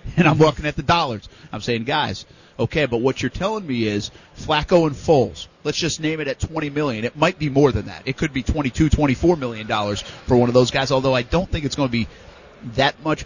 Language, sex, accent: English, male, American